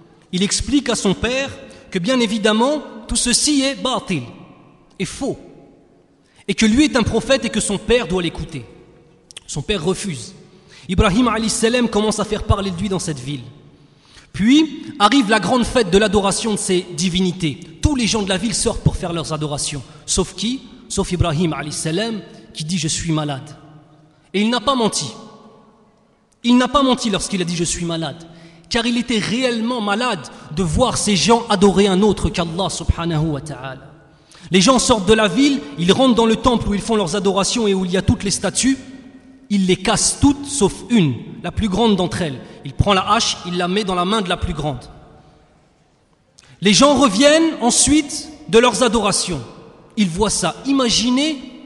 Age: 30-49